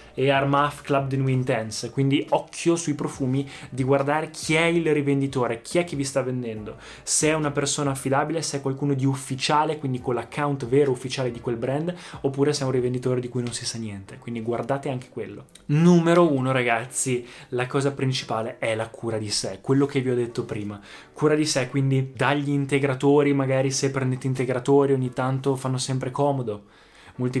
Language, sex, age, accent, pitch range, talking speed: Italian, male, 20-39, native, 125-145 Hz, 195 wpm